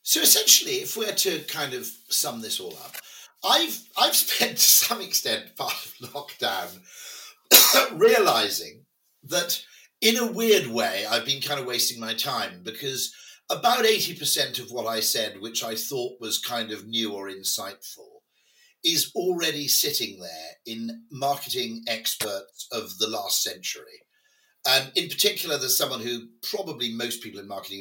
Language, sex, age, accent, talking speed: English, male, 50-69, British, 155 wpm